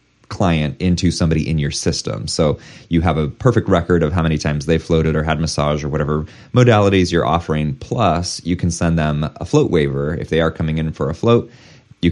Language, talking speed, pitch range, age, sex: English, 215 wpm, 80-115 Hz, 30-49, male